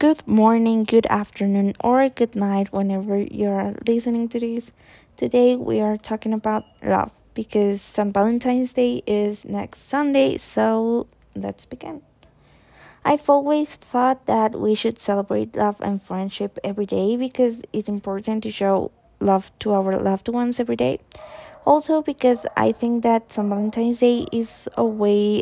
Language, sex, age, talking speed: English, female, 20-39, 150 wpm